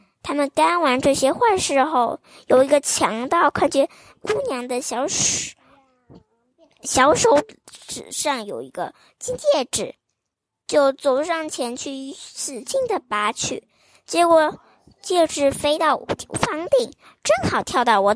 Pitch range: 245-320 Hz